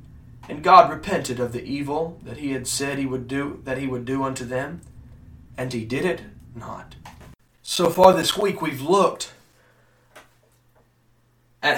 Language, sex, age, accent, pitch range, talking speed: English, male, 30-49, American, 125-185 Hz, 145 wpm